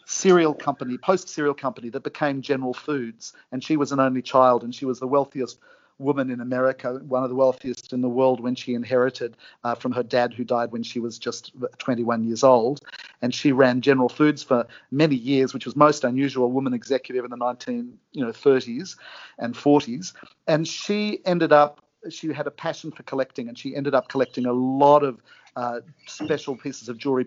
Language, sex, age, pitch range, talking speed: English, male, 50-69, 125-140 Hz, 195 wpm